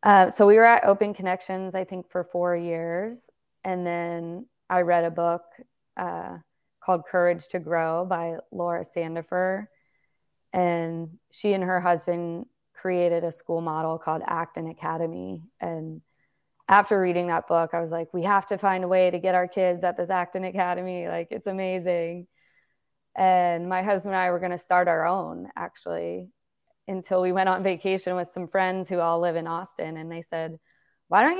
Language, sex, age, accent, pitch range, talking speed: English, female, 20-39, American, 170-195 Hz, 180 wpm